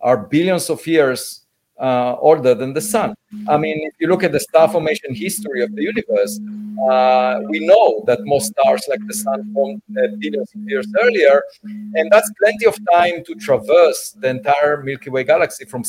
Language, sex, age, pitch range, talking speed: English, male, 50-69, 150-210 Hz, 185 wpm